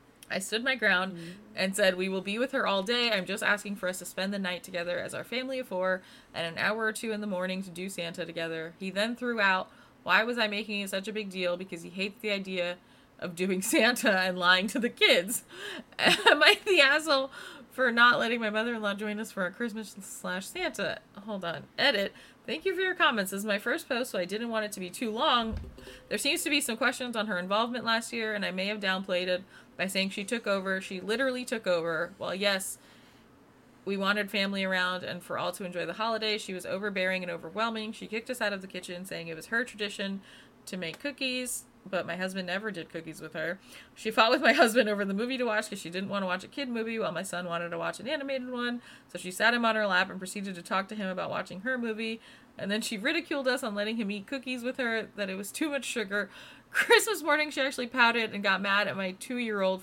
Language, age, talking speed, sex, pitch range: English, 20-39, 245 wpm, female, 185-235 Hz